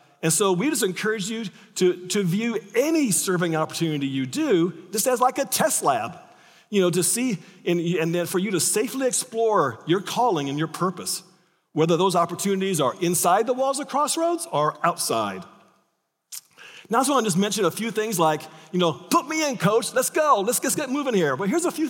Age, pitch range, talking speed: 40-59, 175-235 Hz, 210 wpm